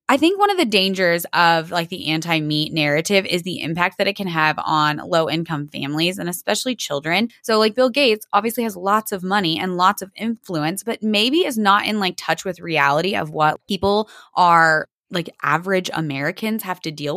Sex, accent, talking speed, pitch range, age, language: female, American, 205 wpm, 170-230 Hz, 10-29, English